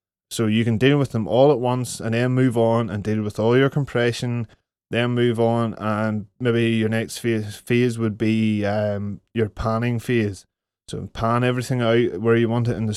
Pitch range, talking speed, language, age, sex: 110-125 Hz, 200 wpm, English, 20-39, male